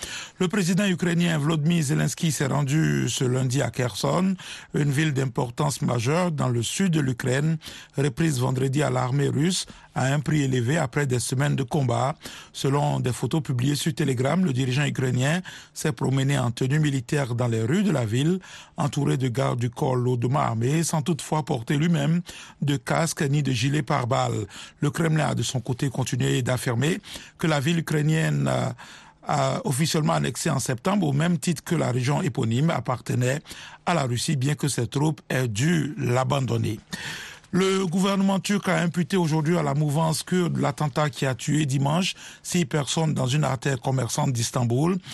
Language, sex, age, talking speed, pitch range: French, male, 50-69, 170 wpm, 130-165 Hz